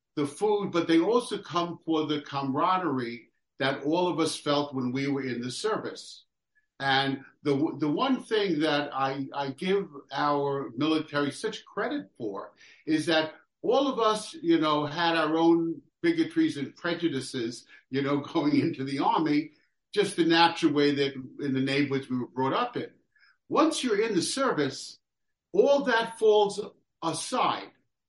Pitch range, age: 140-210 Hz, 60-79